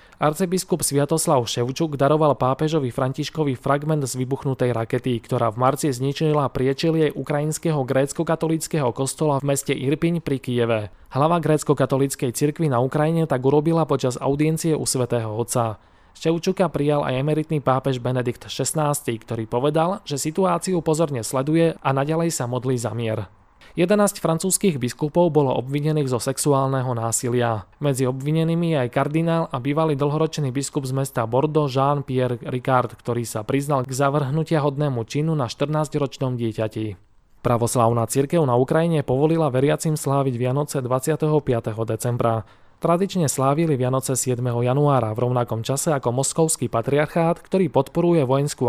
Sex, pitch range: male, 125-155 Hz